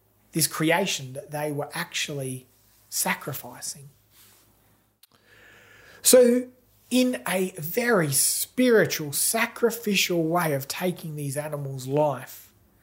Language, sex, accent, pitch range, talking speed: English, male, Australian, 110-170 Hz, 90 wpm